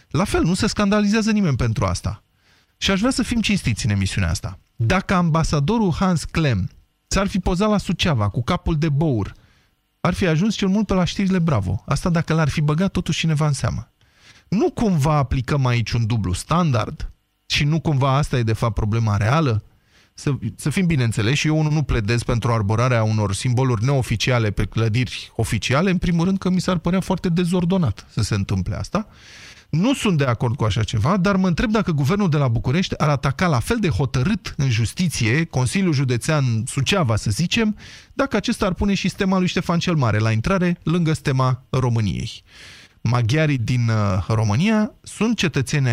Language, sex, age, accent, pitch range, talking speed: Romanian, male, 30-49, native, 115-180 Hz, 185 wpm